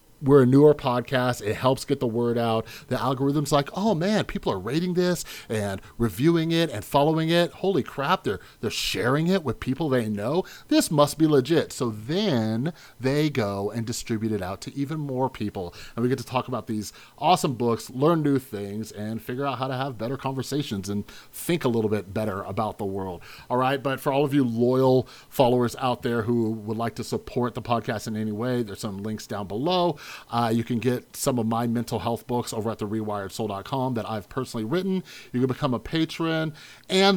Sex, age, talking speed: male, 30-49, 210 wpm